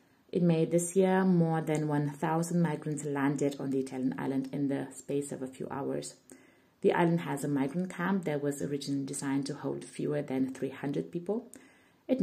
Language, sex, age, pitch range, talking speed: English, female, 30-49, 130-175 Hz, 180 wpm